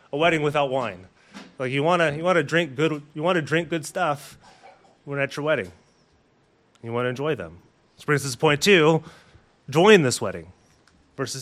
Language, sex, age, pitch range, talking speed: English, male, 30-49, 140-180 Hz, 175 wpm